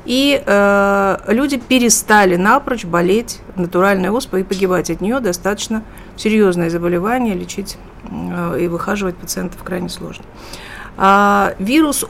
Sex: female